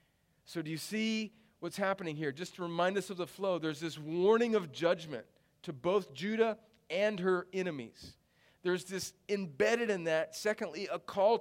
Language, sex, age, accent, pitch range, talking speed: English, male, 40-59, American, 135-185 Hz, 175 wpm